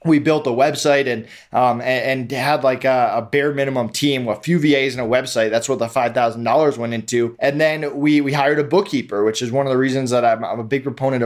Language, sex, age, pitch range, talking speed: English, male, 20-39, 125-145 Hz, 250 wpm